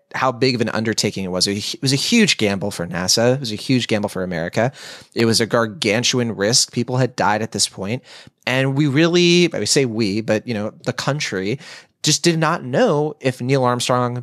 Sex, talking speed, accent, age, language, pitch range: male, 215 wpm, American, 30-49, English, 110-140 Hz